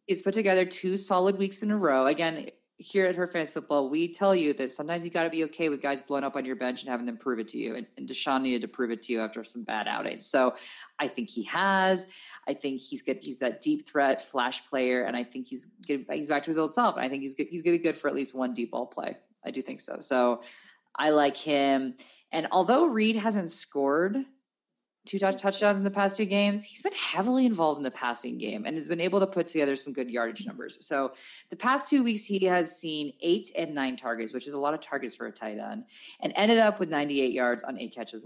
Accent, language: American, English